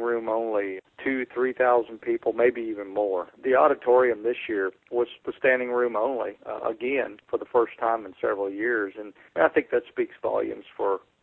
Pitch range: 105-145 Hz